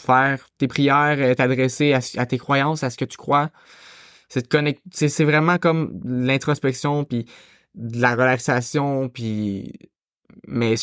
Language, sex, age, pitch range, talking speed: French, male, 20-39, 120-150 Hz, 145 wpm